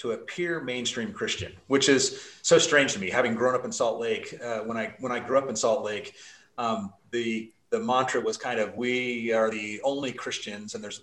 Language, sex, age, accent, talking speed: English, male, 30-49, American, 220 wpm